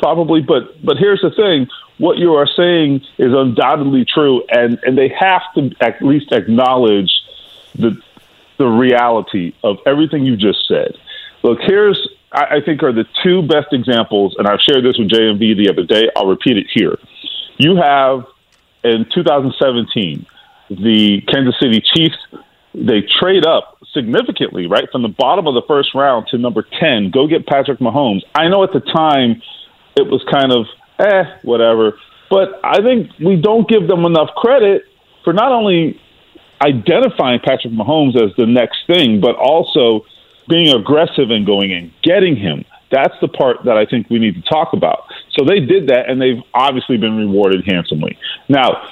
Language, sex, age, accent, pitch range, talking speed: English, male, 40-59, American, 115-175 Hz, 175 wpm